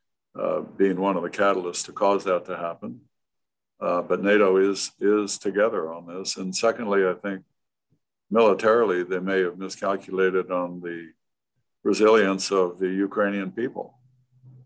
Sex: male